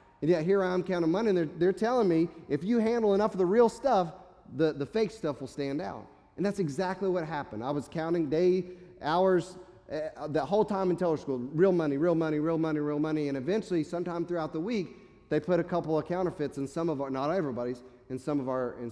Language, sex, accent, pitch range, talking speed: English, male, American, 135-185 Hz, 230 wpm